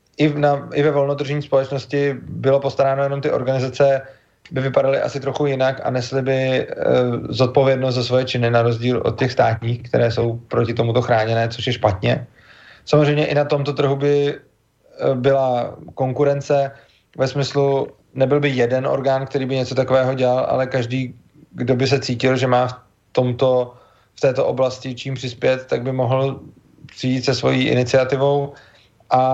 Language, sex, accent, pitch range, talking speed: English, male, Czech, 120-140 Hz, 165 wpm